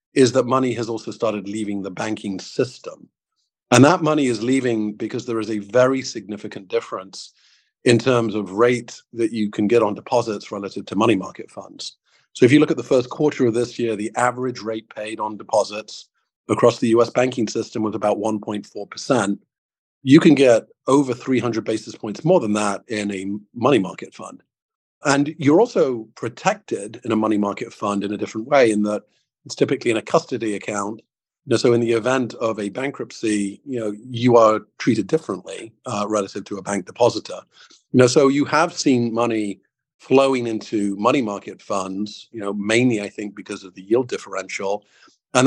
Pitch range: 105-125 Hz